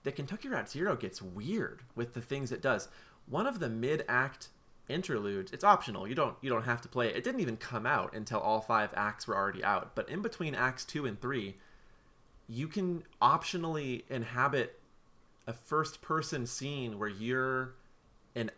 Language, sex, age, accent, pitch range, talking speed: English, male, 20-39, American, 110-125 Hz, 170 wpm